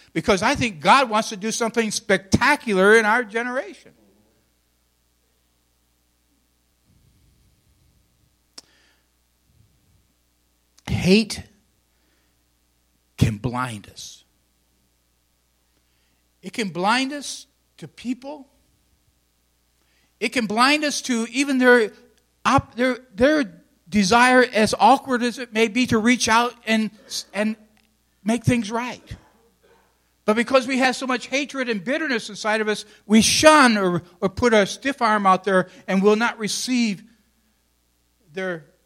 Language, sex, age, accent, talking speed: English, male, 60-79, American, 115 wpm